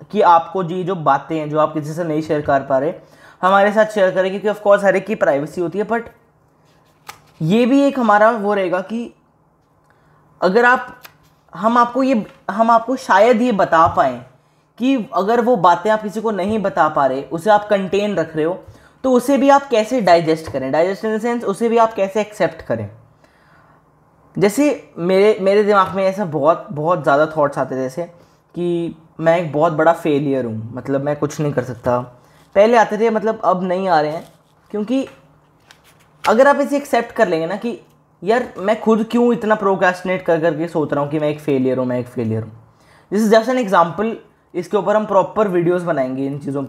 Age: 20-39